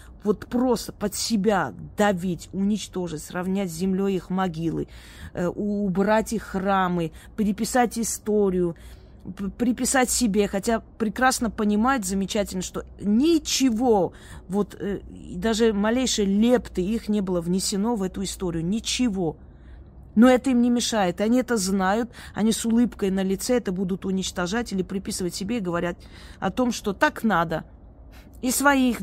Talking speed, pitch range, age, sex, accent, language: 130 wpm, 185-230 Hz, 20-39, female, native, Russian